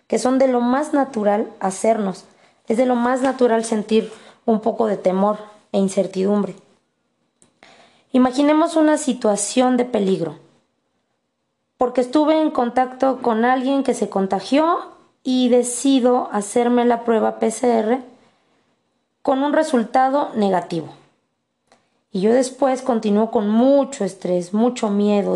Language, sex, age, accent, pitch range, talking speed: Spanish, female, 20-39, Mexican, 200-255 Hz, 125 wpm